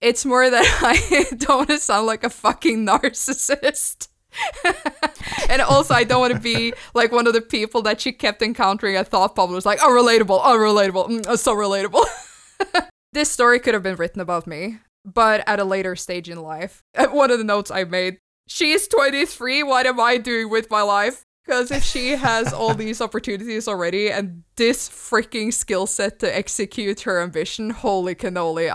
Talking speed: 175 wpm